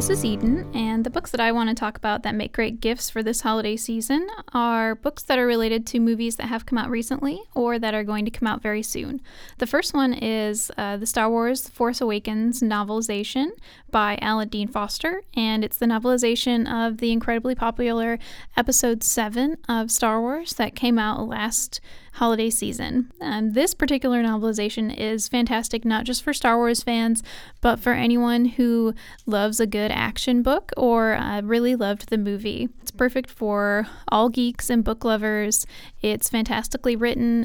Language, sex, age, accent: English, female, 10-29, American